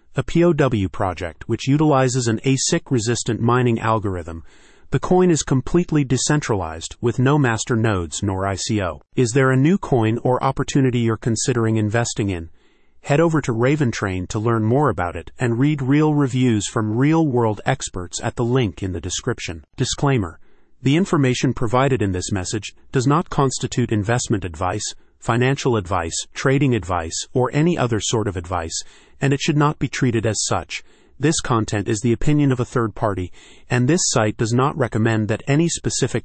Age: 40-59